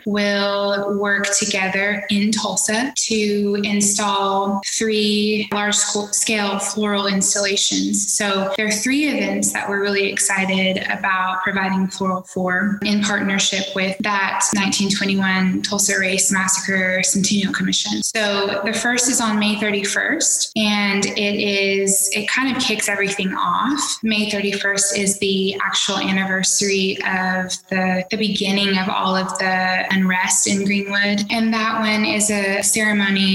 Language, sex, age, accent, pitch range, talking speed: English, female, 10-29, American, 195-215 Hz, 130 wpm